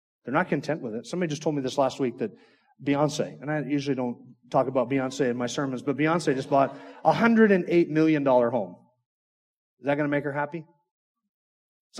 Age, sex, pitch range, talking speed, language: 30-49, male, 125-170 Hz, 200 wpm, English